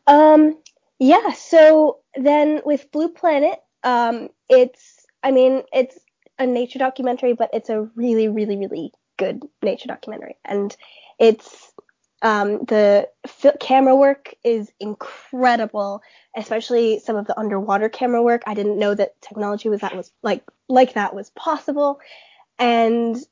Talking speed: 140 wpm